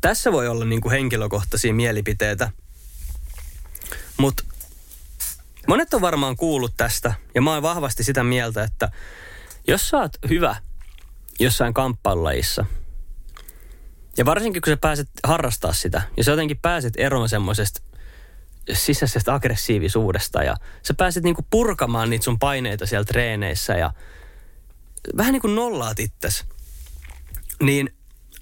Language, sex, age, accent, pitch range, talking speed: Finnish, male, 20-39, native, 85-135 Hz, 125 wpm